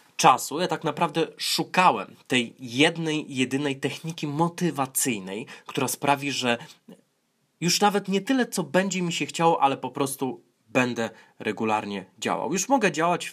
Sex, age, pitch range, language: male, 20-39, 135-175 Hz, Polish